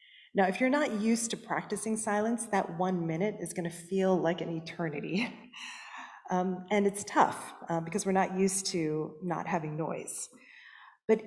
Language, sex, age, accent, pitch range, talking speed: English, female, 40-59, American, 170-215 Hz, 165 wpm